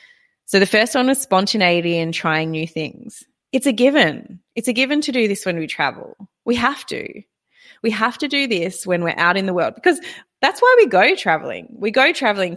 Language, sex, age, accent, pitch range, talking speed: English, female, 20-39, Australian, 175-250 Hz, 215 wpm